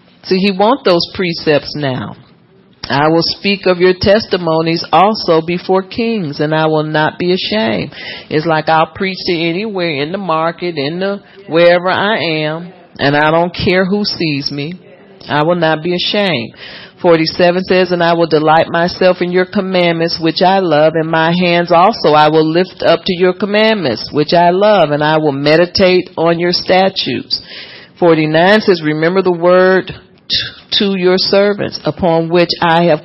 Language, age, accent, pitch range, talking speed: English, 40-59, American, 155-185 Hz, 165 wpm